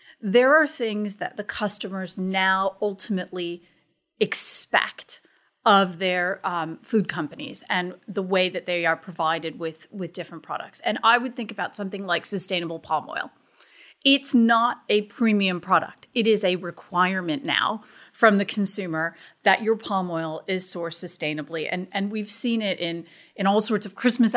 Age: 30-49